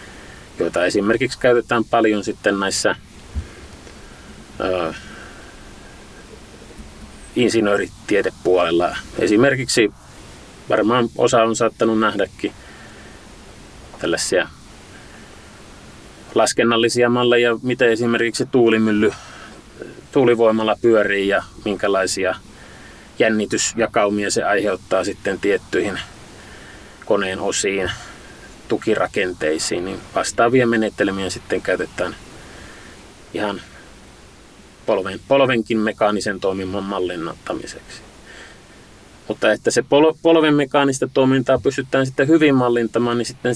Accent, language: native, Finnish